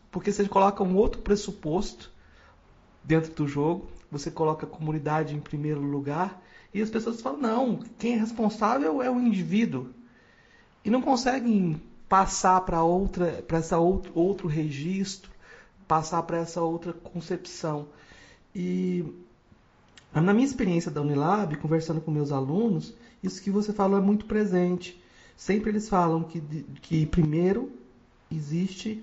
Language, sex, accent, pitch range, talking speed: Portuguese, male, Brazilian, 155-205 Hz, 140 wpm